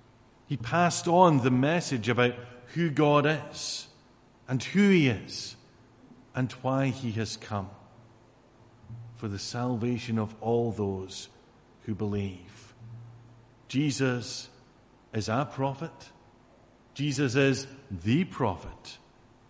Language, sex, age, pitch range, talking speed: English, male, 50-69, 115-155 Hz, 105 wpm